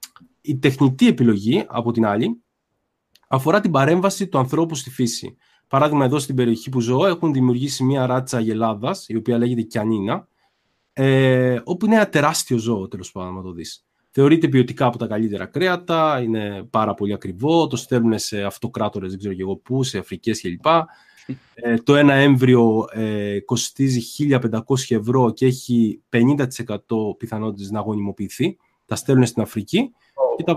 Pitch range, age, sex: 110-145 Hz, 20-39, male